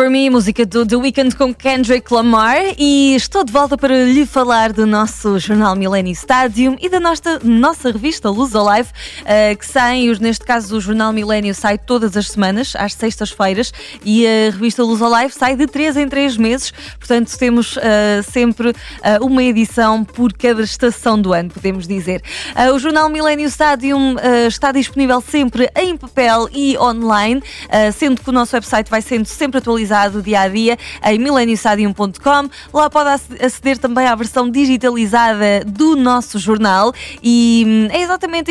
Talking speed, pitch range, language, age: 165 wpm, 215-275 Hz, Portuguese, 20-39